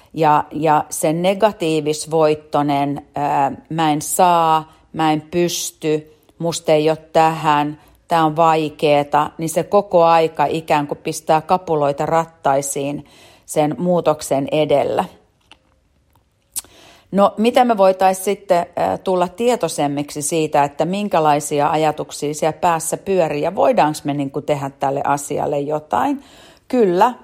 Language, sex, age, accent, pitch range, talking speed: English, female, 40-59, Finnish, 150-185 Hz, 120 wpm